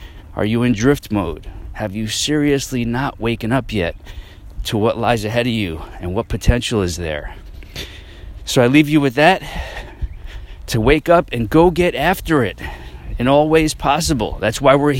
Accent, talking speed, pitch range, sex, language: American, 175 wpm, 95-135 Hz, male, English